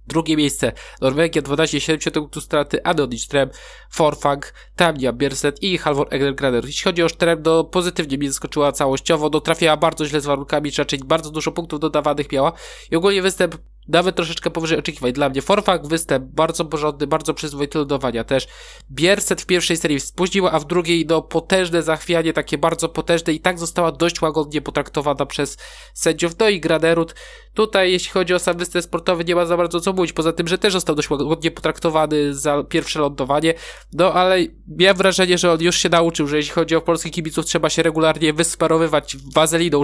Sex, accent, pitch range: male, native, 145-170 Hz